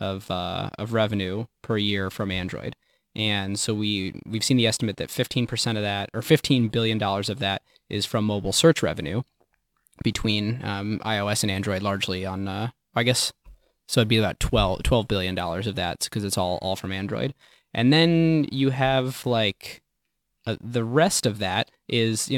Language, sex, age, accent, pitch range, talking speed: English, male, 20-39, American, 100-125 Hz, 180 wpm